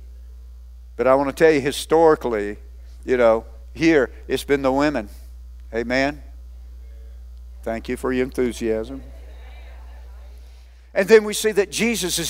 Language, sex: English, male